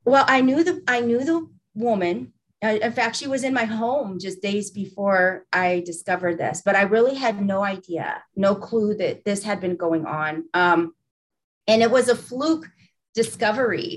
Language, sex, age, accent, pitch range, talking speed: English, female, 40-59, American, 190-235 Hz, 180 wpm